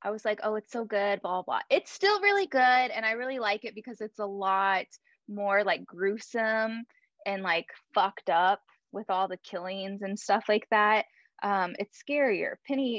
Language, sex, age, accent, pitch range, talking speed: English, female, 10-29, American, 200-275 Hz, 195 wpm